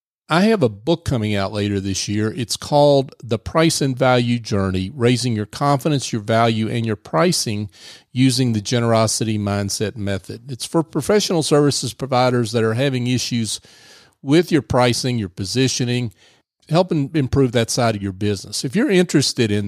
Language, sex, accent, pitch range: English, male, American, 110-135 Hz